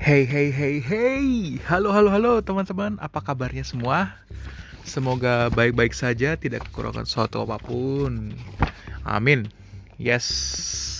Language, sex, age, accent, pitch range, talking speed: Indonesian, male, 20-39, native, 110-130 Hz, 115 wpm